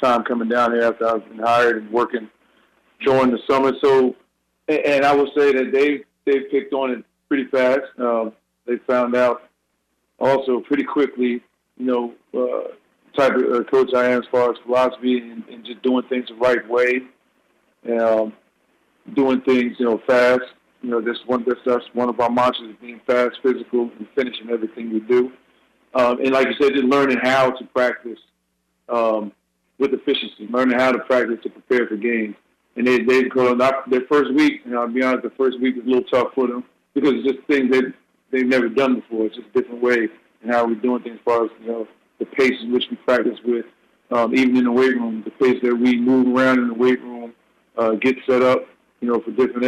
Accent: American